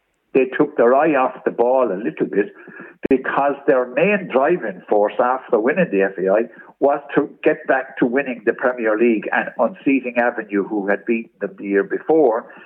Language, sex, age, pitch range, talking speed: English, male, 60-79, 105-140 Hz, 180 wpm